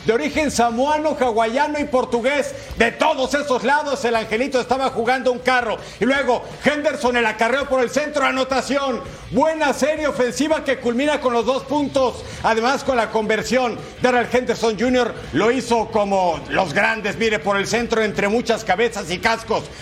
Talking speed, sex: 165 wpm, male